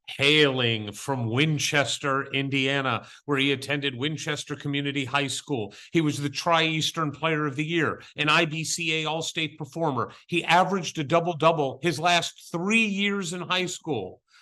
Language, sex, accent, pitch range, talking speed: English, male, American, 150-190 Hz, 140 wpm